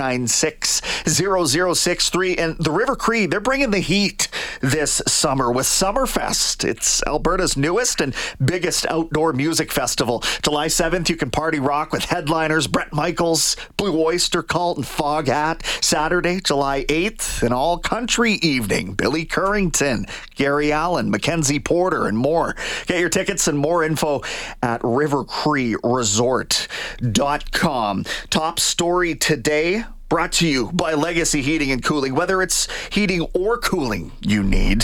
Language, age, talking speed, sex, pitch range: English, 40-59, 135 wpm, male, 135-175 Hz